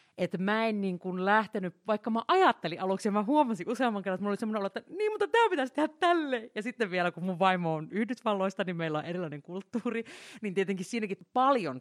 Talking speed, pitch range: 225 wpm, 155-210 Hz